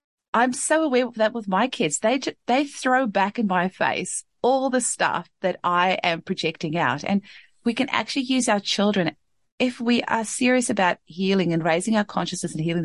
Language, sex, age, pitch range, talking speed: English, female, 30-49, 155-210 Hz, 195 wpm